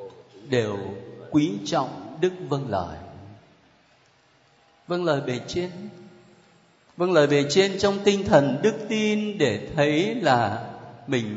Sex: male